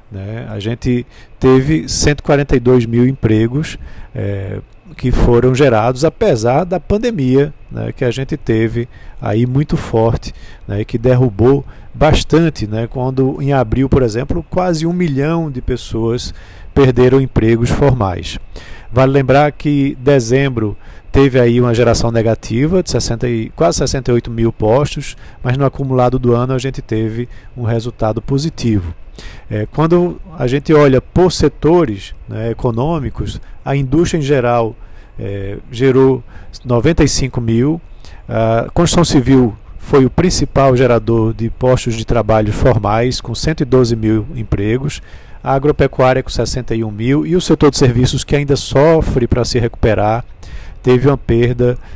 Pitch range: 115-140 Hz